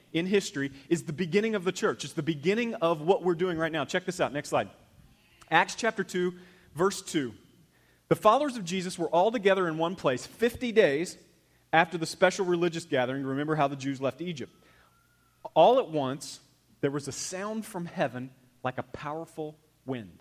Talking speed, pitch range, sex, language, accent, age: 185 wpm, 120-170 Hz, male, English, American, 30-49